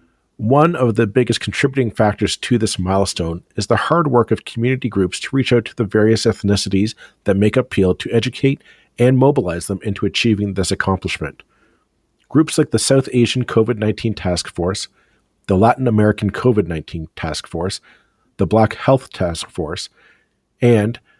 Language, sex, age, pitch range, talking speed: English, male, 40-59, 100-125 Hz, 160 wpm